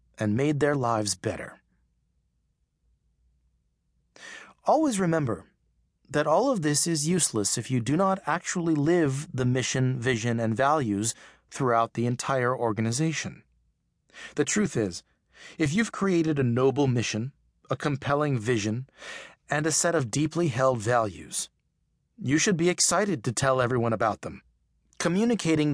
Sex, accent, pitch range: male, American, 110-160 Hz